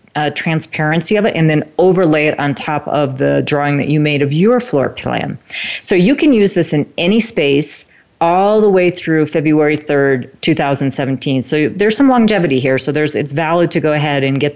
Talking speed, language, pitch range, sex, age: 200 wpm, English, 145-175 Hz, female, 40-59